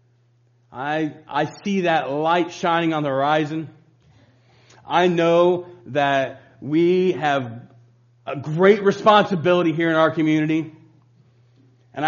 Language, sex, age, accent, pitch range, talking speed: English, male, 40-59, American, 125-185 Hz, 110 wpm